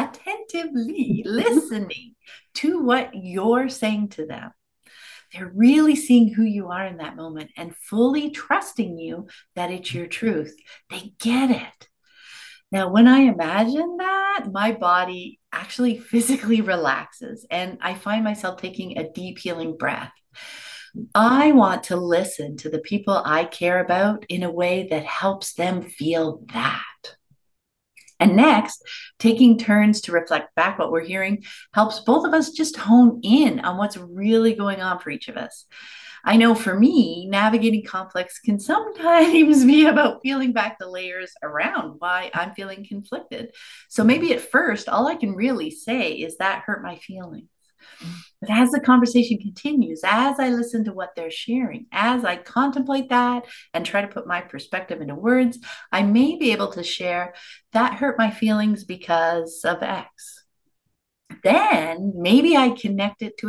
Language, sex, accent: English, female, American